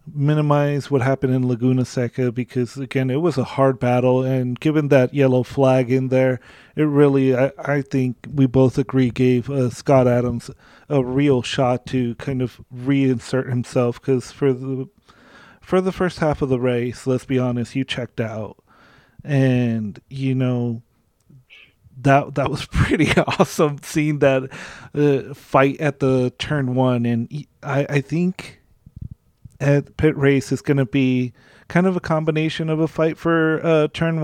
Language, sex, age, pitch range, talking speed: English, male, 30-49, 125-145 Hz, 165 wpm